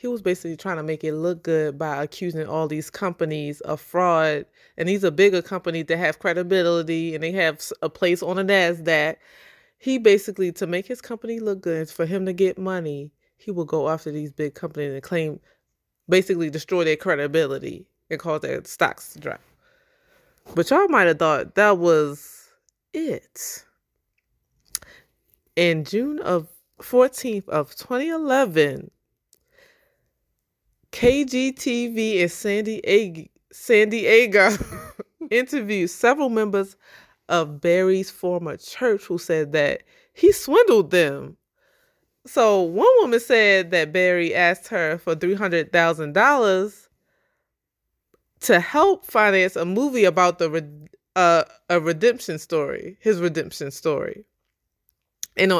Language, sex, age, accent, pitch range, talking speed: English, female, 20-39, American, 165-230 Hz, 135 wpm